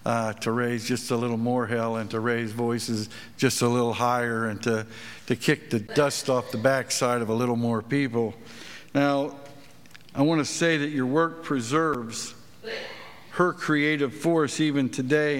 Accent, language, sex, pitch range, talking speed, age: American, English, male, 130-155 Hz, 170 wpm, 60-79